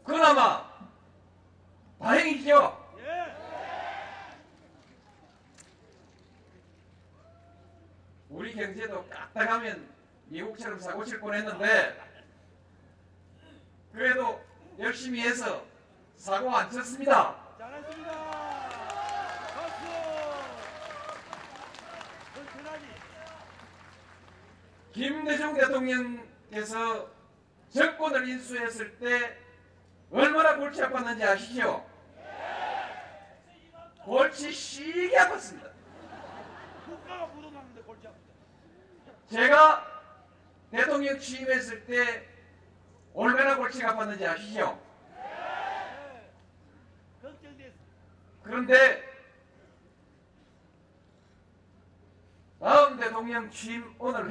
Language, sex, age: Korean, male, 40-59